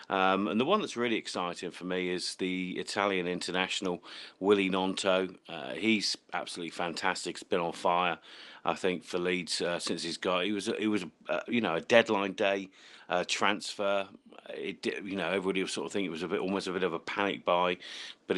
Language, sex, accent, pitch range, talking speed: English, male, British, 85-95 Hz, 205 wpm